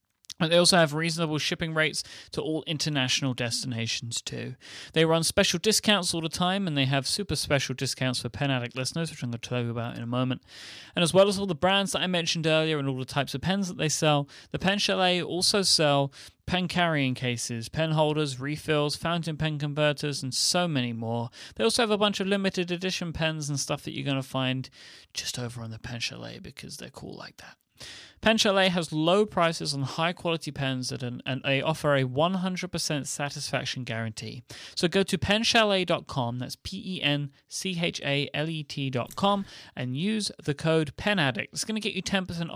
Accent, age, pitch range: British, 30-49, 135-180 Hz